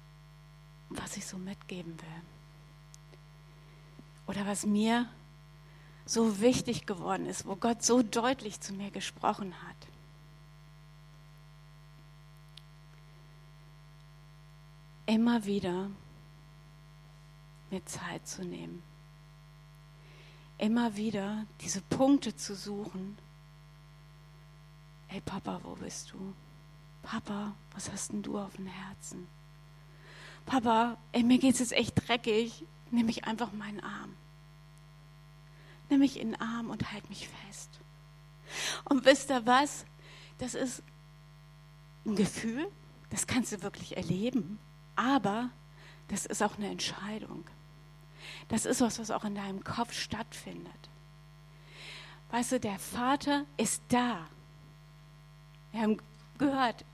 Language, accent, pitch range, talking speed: German, German, 150-210 Hz, 110 wpm